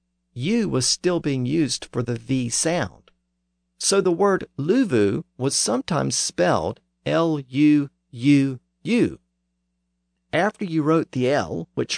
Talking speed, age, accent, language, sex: 115 wpm, 50-69, American, English, male